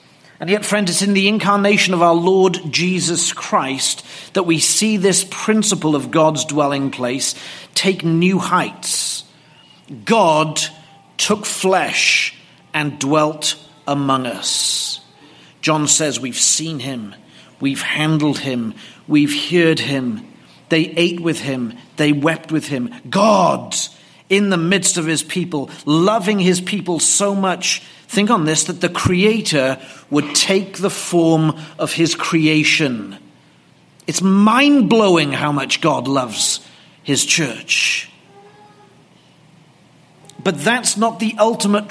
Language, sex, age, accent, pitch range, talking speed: English, male, 40-59, British, 150-190 Hz, 125 wpm